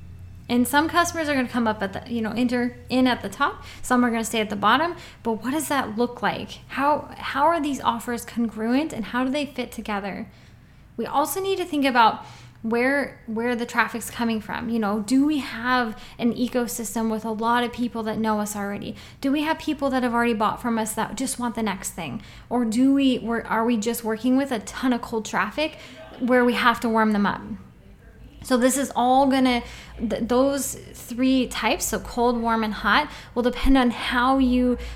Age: 10-29